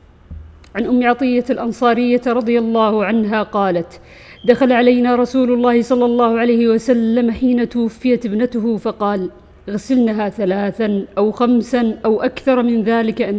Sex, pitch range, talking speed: female, 205-240 Hz, 130 wpm